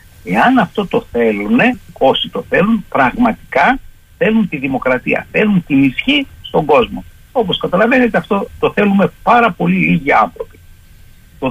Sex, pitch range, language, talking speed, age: male, 160-245 Hz, Greek, 135 wpm, 60-79